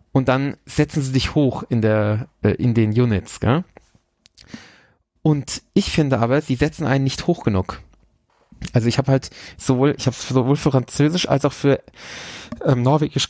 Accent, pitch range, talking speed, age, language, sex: German, 115-150 Hz, 165 wpm, 30-49, German, male